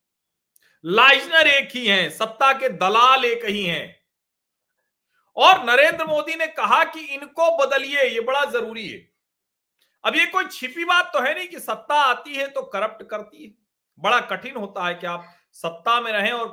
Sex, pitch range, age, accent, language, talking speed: male, 225-315 Hz, 40-59, native, Hindi, 175 wpm